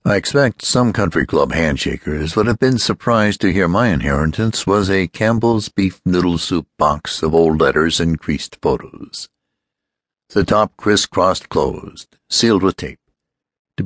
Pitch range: 80-105 Hz